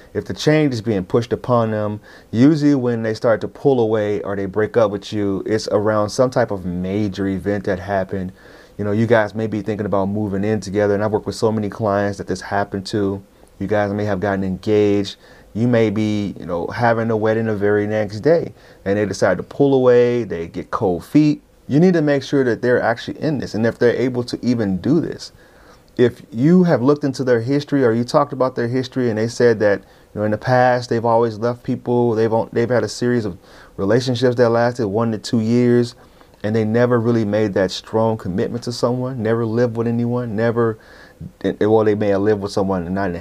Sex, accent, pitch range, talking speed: male, American, 100-120 Hz, 225 wpm